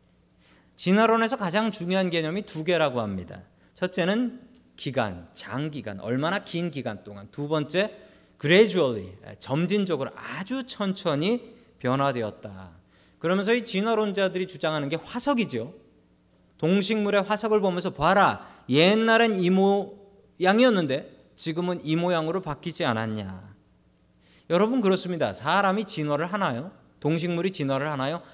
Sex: male